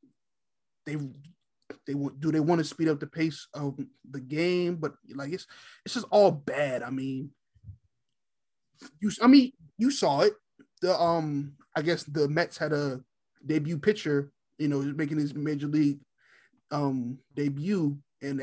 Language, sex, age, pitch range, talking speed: English, male, 20-39, 140-185 Hz, 155 wpm